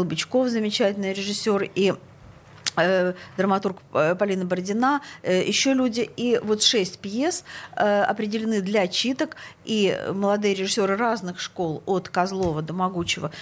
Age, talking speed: 50-69, 125 wpm